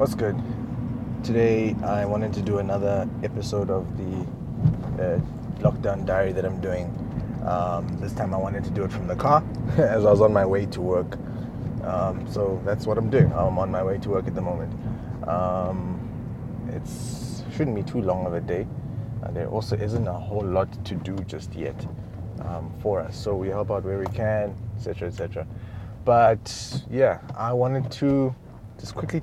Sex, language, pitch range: male, English, 95-115 Hz